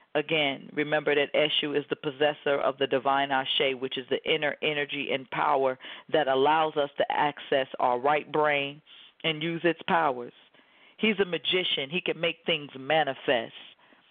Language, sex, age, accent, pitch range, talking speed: English, female, 40-59, American, 145-195 Hz, 160 wpm